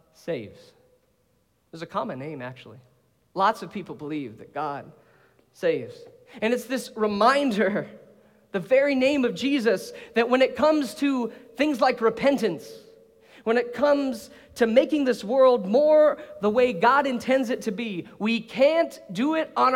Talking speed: 150 wpm